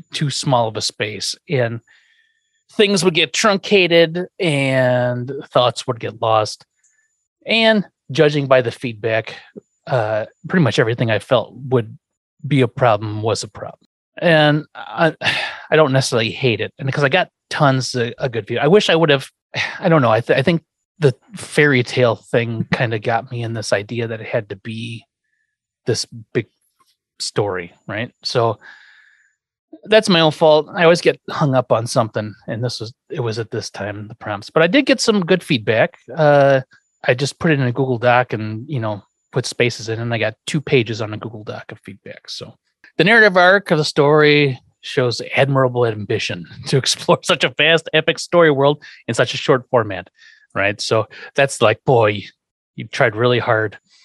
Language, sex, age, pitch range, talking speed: English, male, 30-49, 115-165 Hz, 185 wpm